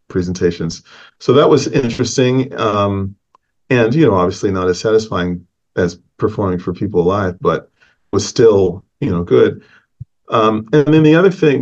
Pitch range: 90-110 Hz